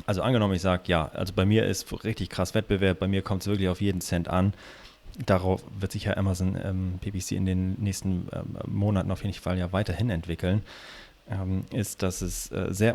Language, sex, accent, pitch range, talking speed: German, male, German, 95-110 Hz, 210 wpm